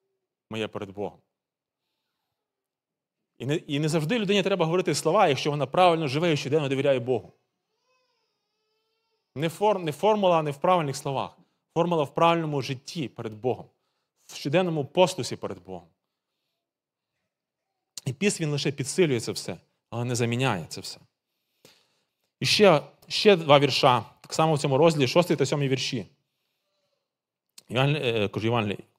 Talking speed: 140 wpm